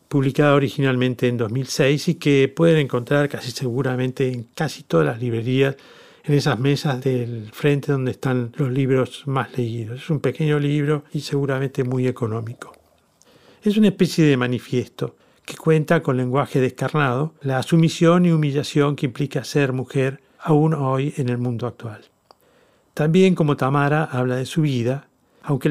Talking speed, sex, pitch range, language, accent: 155 wpm, male, 125-150 Hz, Spanish, Argentinian